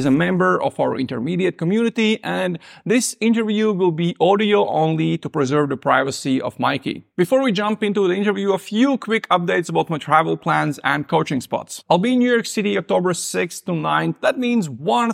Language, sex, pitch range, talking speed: English, male, 150-210 Hz, 200 wpm